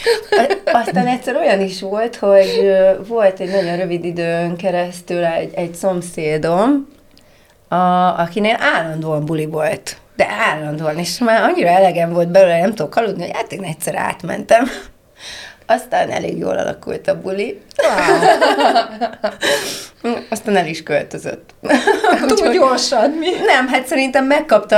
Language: Hungarian